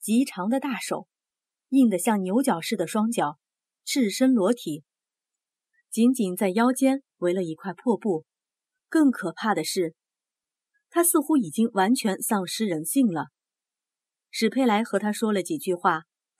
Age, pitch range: 30-49, 175-240 Hz